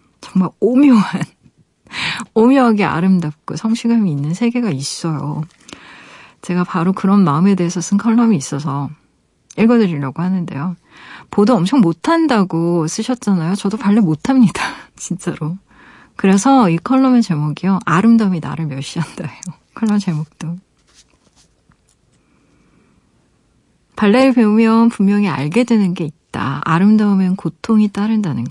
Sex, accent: female, native